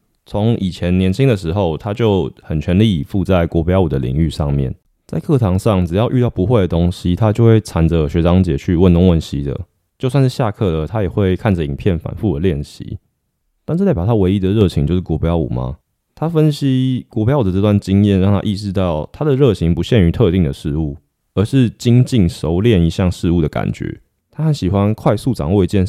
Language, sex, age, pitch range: Chinese, male, 20-39, 80-110 Hz